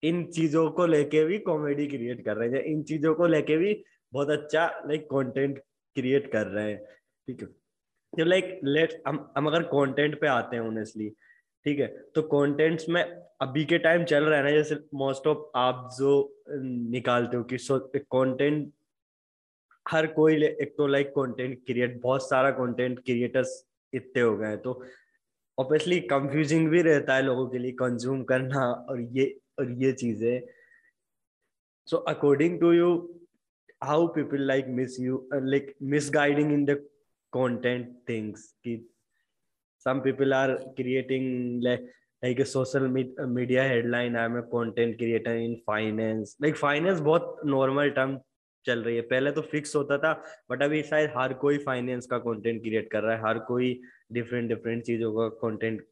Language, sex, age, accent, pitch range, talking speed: Hindi, male, 20-39, native, 120-150 Hz, 150 wpm